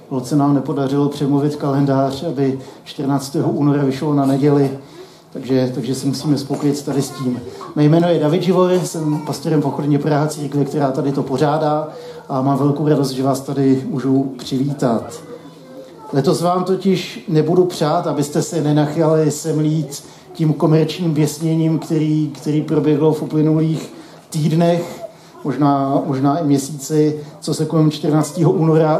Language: Czech